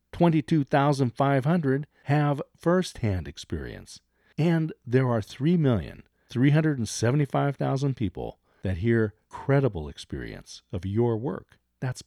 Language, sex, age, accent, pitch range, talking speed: English, male, 50-69, American, 100-140 Hz, 90 wpm